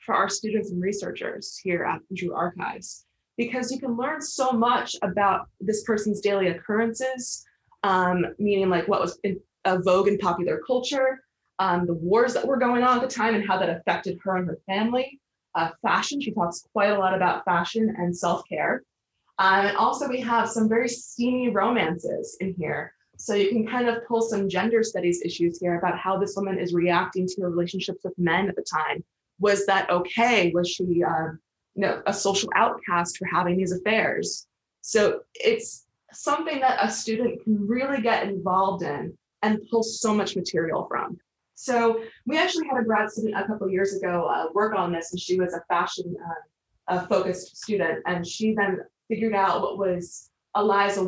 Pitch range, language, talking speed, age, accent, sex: 185-230 Hz, English, 185 wpm, 20-39, American, female